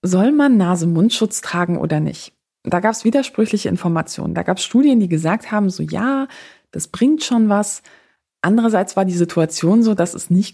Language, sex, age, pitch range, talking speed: German, female, 20-39, 170-230 Hz, 180 wpm